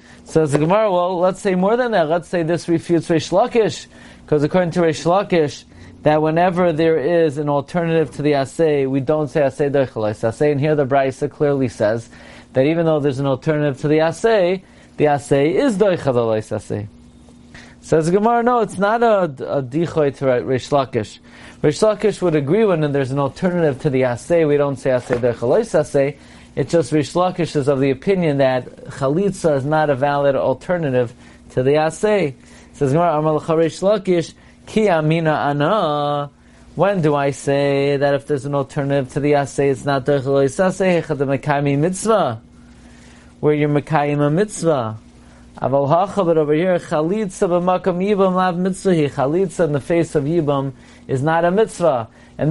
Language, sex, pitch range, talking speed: English, male, 140-175 Hz, 160 wpm